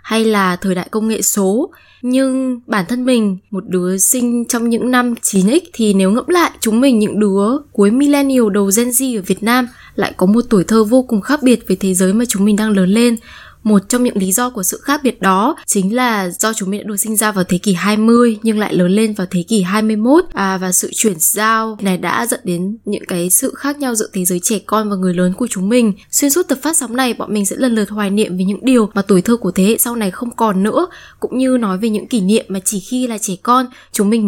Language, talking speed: Vietnamese, 265 wpm